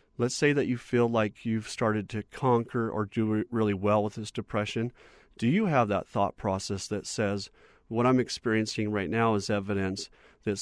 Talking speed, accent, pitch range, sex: 185 wpm, American, 105-120 Hz, male